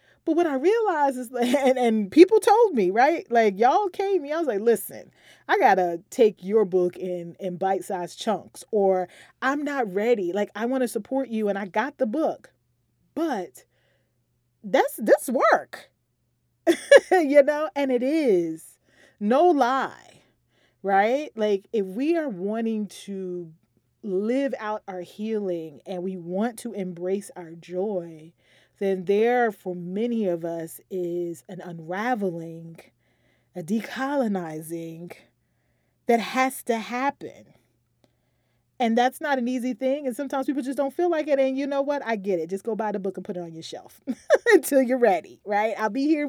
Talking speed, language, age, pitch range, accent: 160 wpm, English, 30-49, 185-270 Hz, American